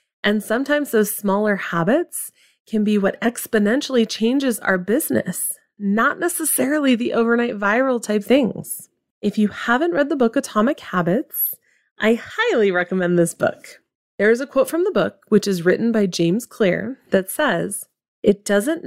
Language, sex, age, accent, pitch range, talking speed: English, female, 30-49, American, 190-245 Hz, 155 wpm